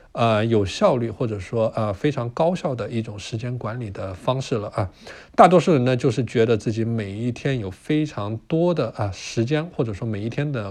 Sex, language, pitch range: male, Chinese, 110-160 Hz